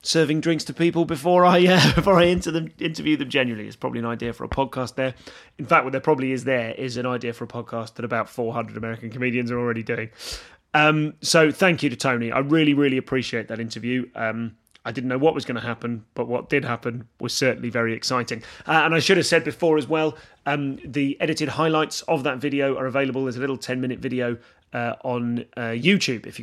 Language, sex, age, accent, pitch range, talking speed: English, male, 30-49, British, 120-150 Hz, 225 wpm